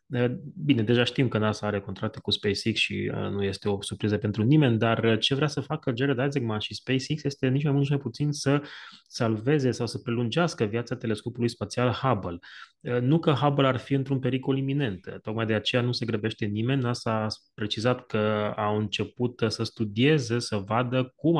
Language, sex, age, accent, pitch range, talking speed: Romanian, male, 20-39, native, 110-135 Hz, 190 wpm